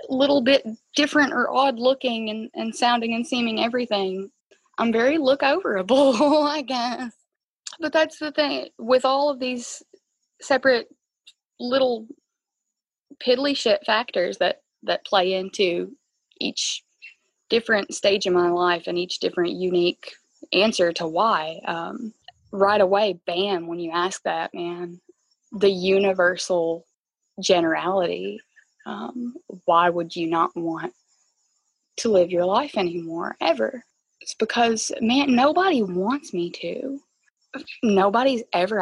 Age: 20-39